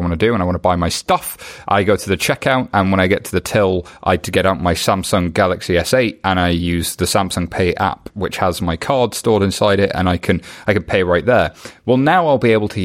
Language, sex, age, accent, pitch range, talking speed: English, male, 30-49, British, 95-120 Hz, 275 wpm